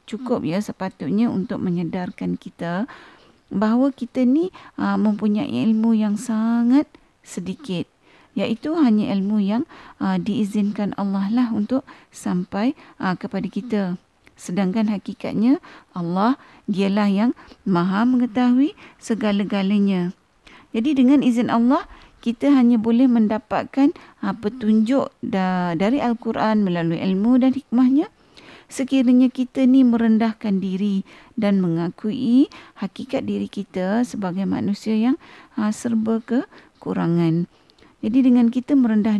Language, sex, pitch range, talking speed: Malay, female, 200-255 Hz, 105 wpm